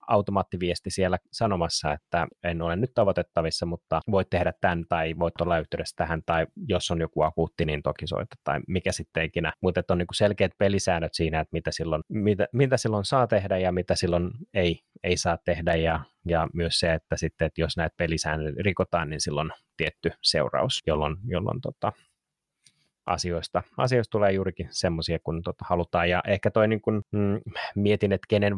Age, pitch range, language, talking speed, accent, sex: 30-49, 85-100 Hz, Finnish, 175 wpm, native, male